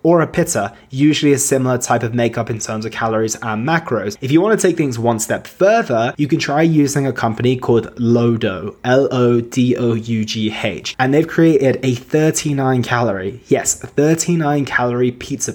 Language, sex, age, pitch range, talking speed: English, male, 20-39, 120-155 Hz, 165 wpm